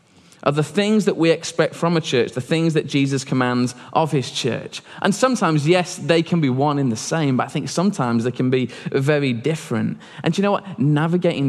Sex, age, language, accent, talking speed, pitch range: male, 20-39, English, British, 220 wpm, 125-165 Hz